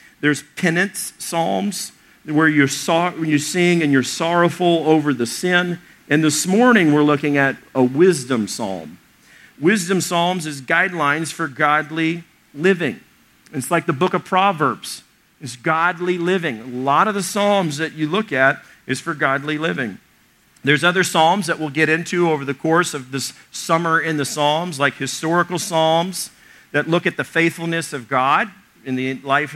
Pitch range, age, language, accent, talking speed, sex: 150-185 Hz, 50-69, English, American, 170 wpm, male